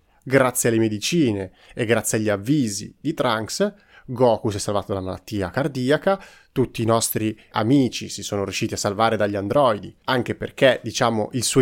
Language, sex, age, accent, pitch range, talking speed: Italian, male, 30-49, native, 110-145 Hz, 165 wpm